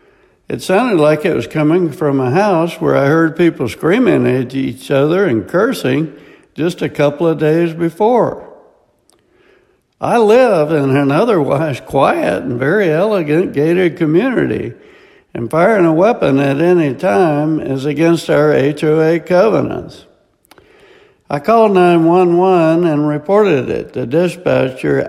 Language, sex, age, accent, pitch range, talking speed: English, male, 60-79, American, 145-195 Hz, 135 wpm